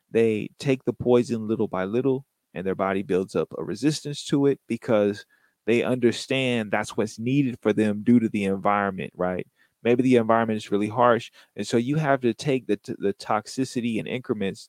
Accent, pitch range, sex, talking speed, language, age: American, 110-135 Hz, male, 190 wpm, English, 30-49